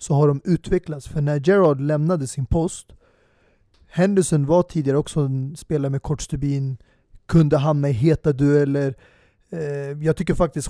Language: Swedish